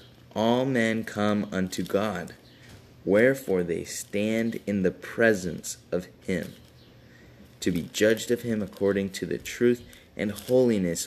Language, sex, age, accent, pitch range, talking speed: English, male, 20-39, American, 100-120 Hz, 130 wpm